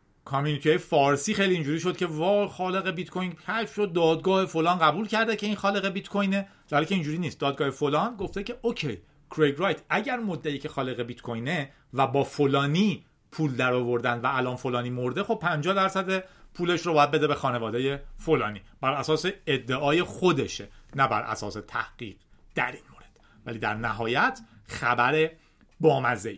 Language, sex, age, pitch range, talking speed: Persian, male, 40-59, 130-195 Hz, 165 wpm